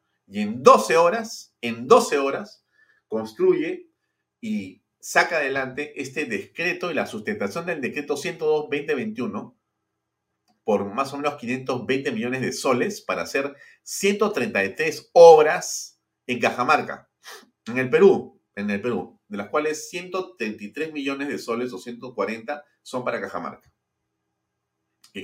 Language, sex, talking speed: Spanish, male, 125 wpm